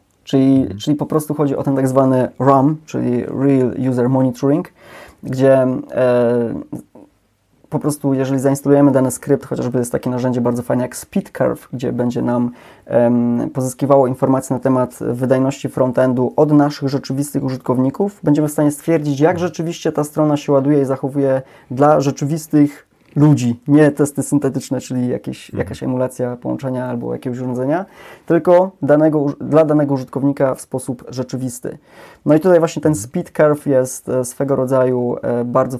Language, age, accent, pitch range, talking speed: Polish, 20-39, native, 125-150 Hz, 145 wpm